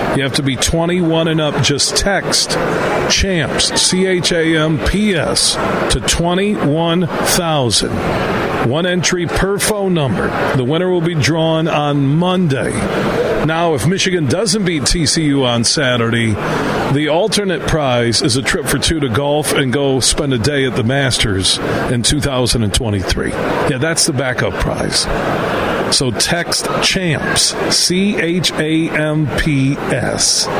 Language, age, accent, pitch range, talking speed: English, 40-59, American, 130-165 Hz, 120 wpm